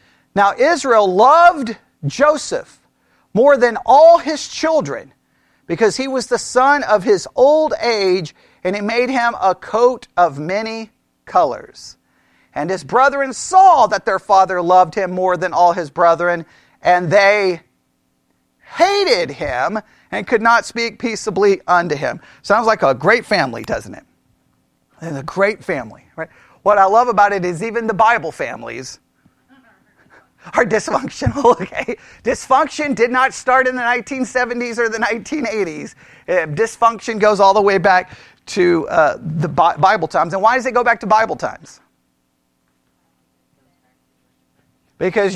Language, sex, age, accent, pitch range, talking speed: English, male, 40-59, American, 185-260 Hz, 140 wpm